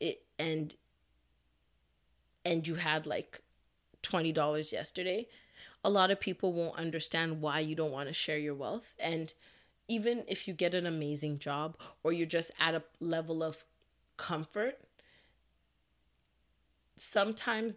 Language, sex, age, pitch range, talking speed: English, female, 30-49, 155-180 Hz, 125 wpm